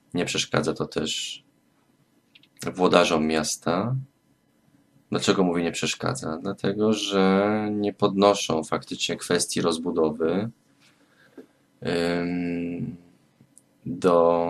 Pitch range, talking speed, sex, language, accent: 80-100 Hz, 75 wpm, male, Polish, native